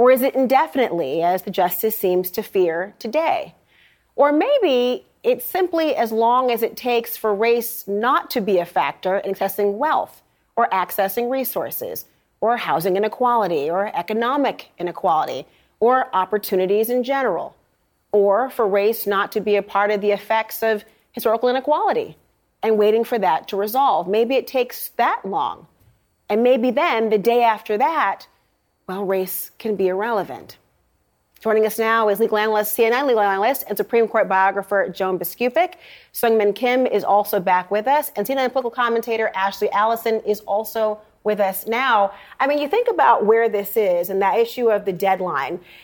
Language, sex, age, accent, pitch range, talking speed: English, female, 40-59, American, 200-245 Hz, 165 wpm